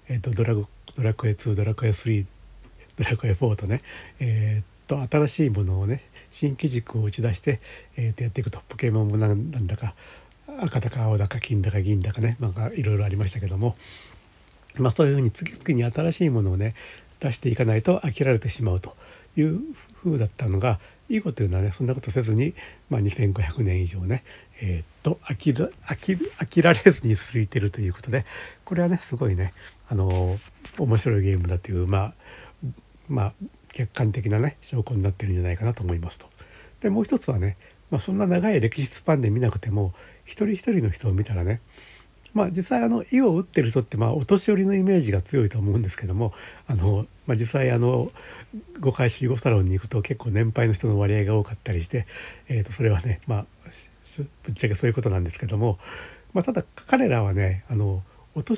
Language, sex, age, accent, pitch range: Japanese, male, 60-79, native, 100-130 Hz